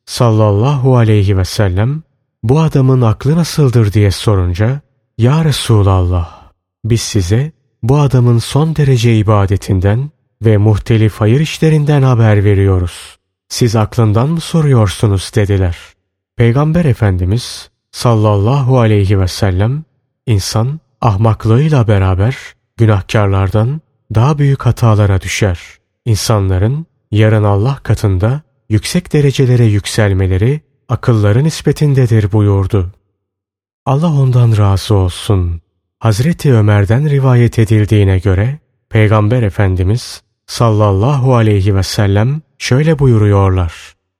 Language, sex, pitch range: Turkish, male, 100-130 Hz